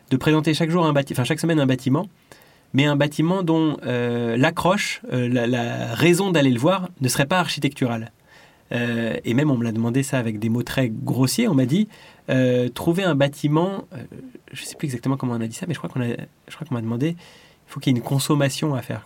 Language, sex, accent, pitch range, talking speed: French, male, French, 125-160 Hz, 245 wpm